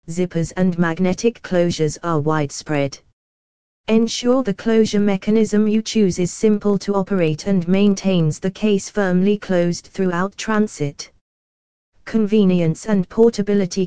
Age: 20-39